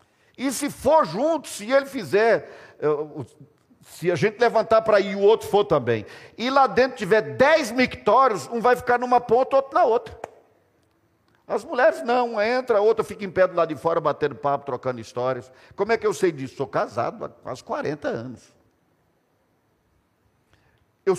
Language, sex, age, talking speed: Portuguese, male, 50-69, 180 wpm